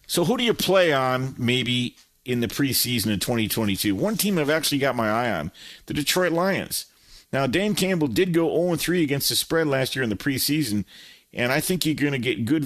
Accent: American